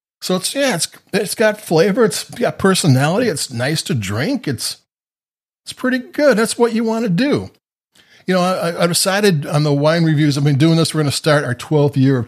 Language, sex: English, male